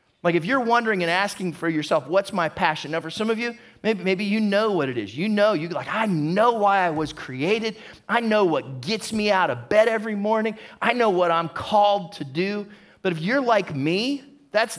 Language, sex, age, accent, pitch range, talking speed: English, male, 30-49, American, 170-235 Hz, 225 wpm